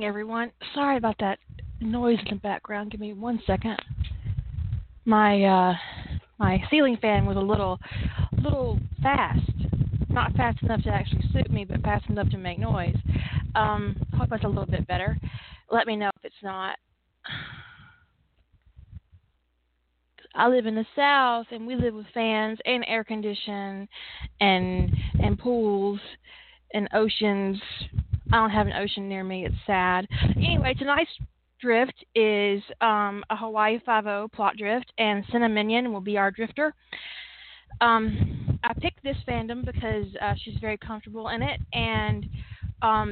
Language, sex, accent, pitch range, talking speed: English, female, American, 195-235 Hz, 145 wpm